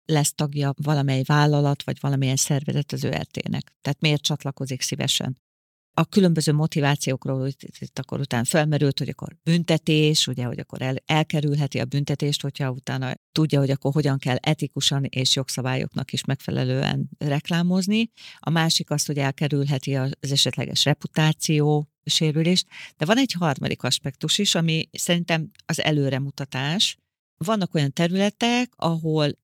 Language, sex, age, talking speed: Hungarian, female, 40-59, 140 wpm